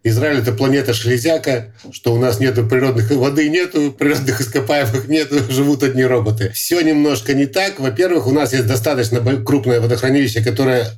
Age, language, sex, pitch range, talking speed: 50-69, Russian, male, 115-145 Hz, 160 wpm